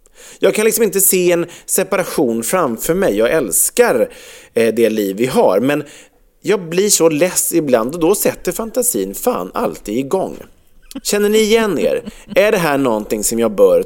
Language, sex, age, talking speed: English, male, 30-49, 170 wpm